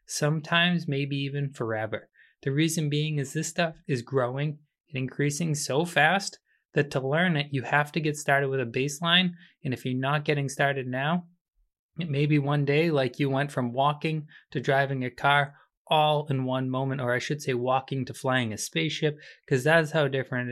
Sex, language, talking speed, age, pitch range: male, English, 195 wpm, 20-39, 130-150 Hz